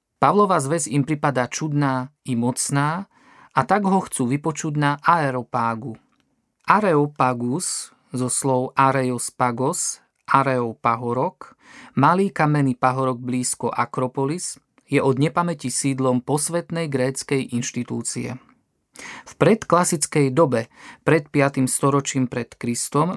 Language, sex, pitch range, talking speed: Slovak, male, 130-155 Hz, 105 wpm